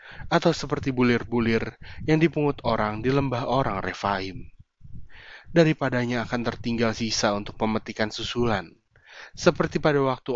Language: Indonesian